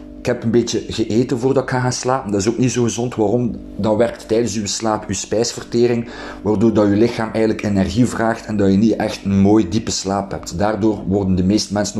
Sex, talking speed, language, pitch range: male, 225 wpm, Dutch, 105-145 Hz